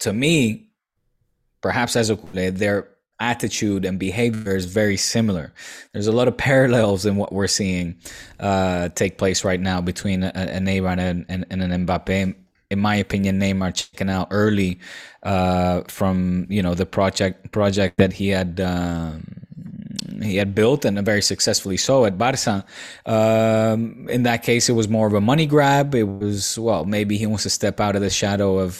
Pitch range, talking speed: 95-115 Hz, 180 wpm